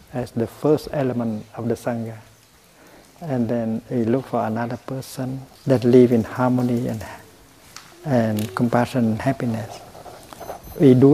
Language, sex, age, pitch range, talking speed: English, male, 60-79, 110-125 Hz, 135 wpm